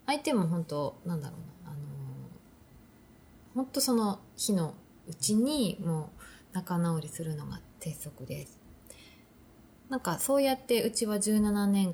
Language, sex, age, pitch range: Japanese, female, 20-39, 155-225 Hz